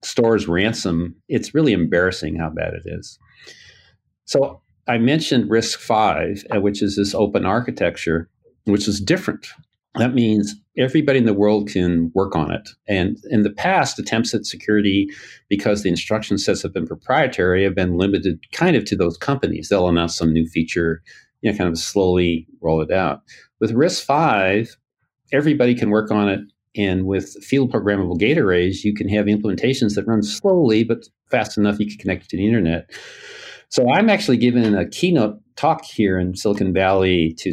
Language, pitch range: English, 95-115 Hz